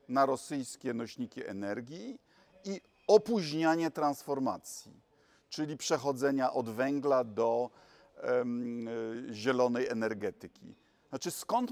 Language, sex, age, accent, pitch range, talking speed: Polish, male, 50-69, native, 130-190 Hz, 80 wpm